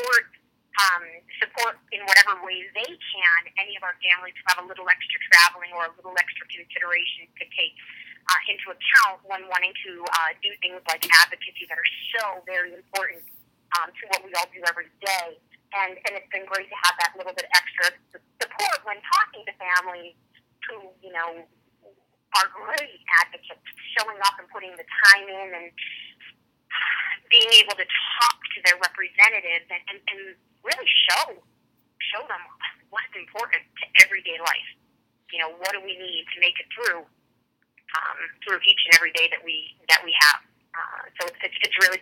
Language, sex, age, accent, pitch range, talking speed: English, female, 30-49, American, 175-205 Hz, 180 wpm